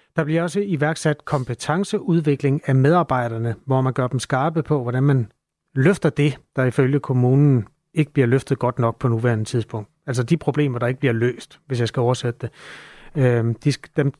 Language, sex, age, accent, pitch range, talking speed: Danish, male, 30-49, native, 125-155 Hz, 175 wpm